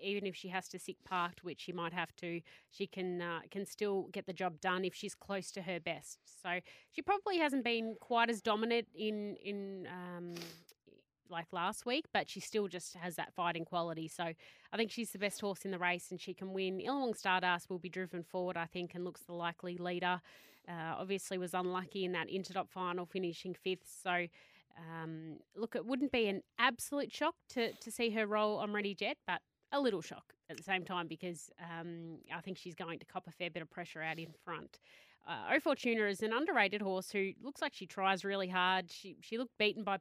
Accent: Australian